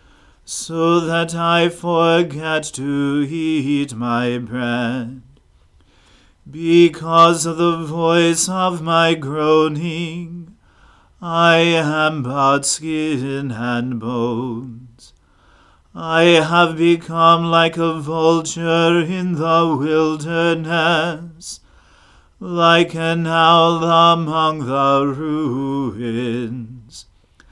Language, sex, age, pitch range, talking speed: English, male, 40-59, 140-170 Hz, 80 wpm